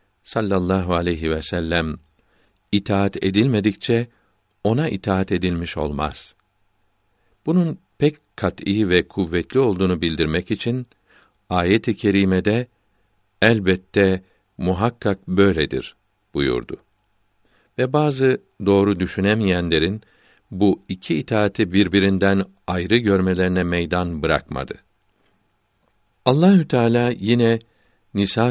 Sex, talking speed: male, 85 wpm